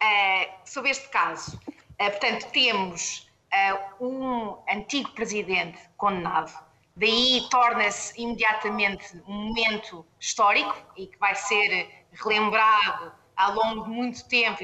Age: 20-39